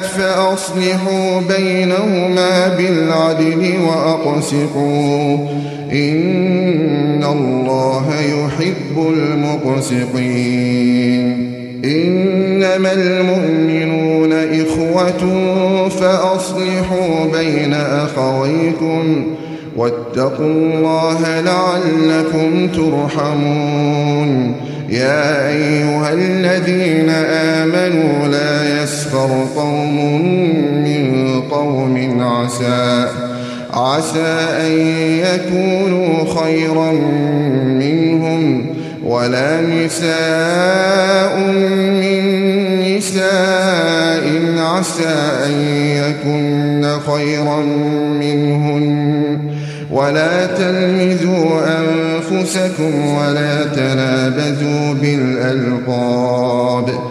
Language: English